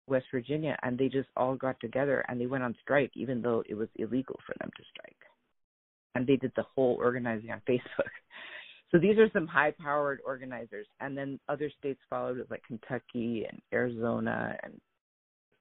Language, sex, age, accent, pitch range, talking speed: English, female, 40-59, American, 125-160 Hz, 185 wpm